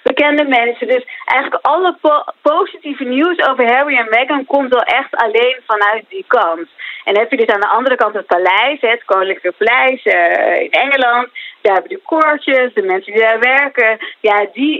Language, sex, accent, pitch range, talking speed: Dutch, female, Dutch, 200-280 Hz, 195 wpm